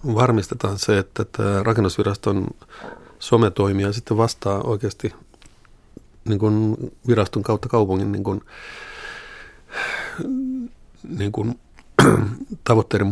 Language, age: Finnish, 50-69